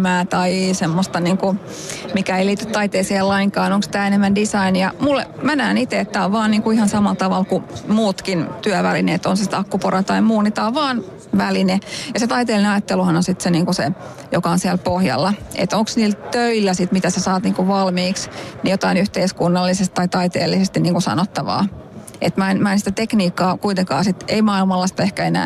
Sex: female